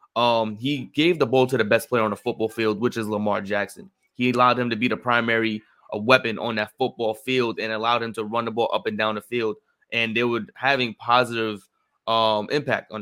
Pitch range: 110-120 Hz